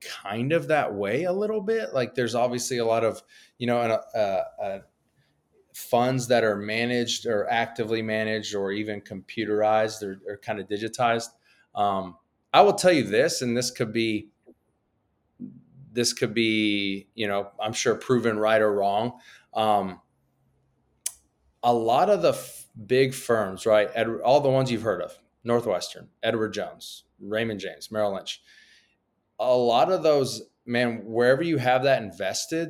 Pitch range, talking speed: 110-130 Hz, 155 wpm